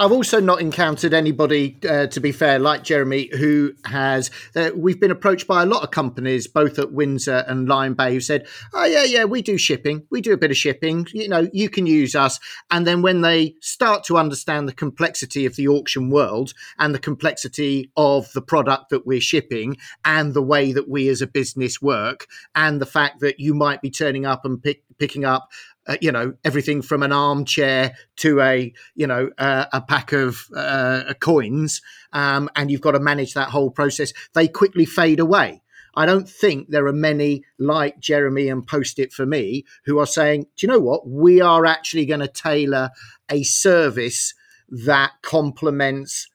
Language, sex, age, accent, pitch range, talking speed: English, male, 40-59, British, 135-165 Hz, 195 wpm